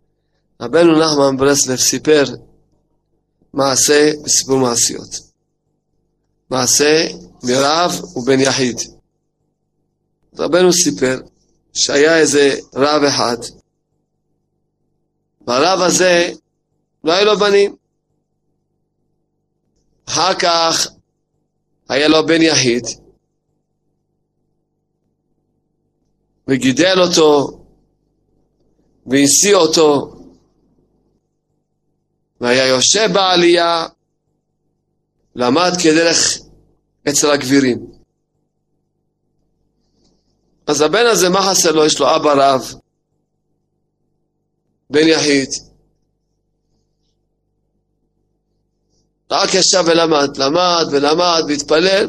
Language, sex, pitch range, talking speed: Hebrew, male, 140-170 Hz, 65 wpm